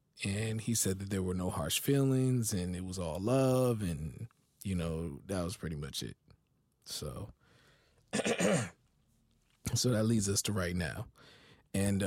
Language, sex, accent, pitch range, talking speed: English, male, American, 95-110 Hz, 155 wpm